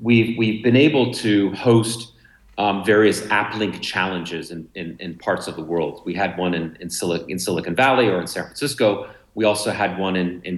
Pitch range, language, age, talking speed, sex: 90-115 Hz, English, 40-59, 205 wpm, male